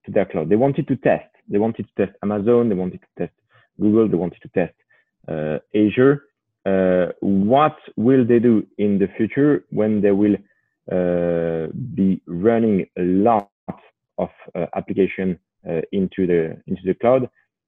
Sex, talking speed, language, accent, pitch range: male, 165 wpm, English, French, 95-130 Hz